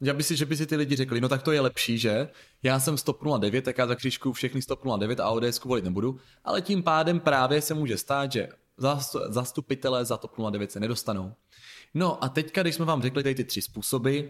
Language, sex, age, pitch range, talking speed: Czech, male, 20-39, 115-145 Hz, 235 wpm